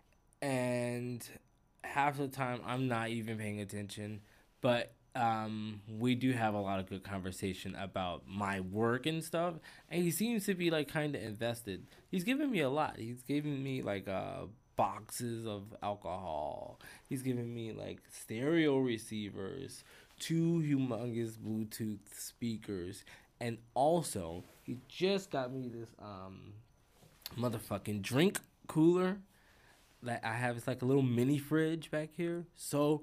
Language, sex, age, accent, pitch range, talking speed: English, male, 20-39, American, 105-155 Hz, 145 wpm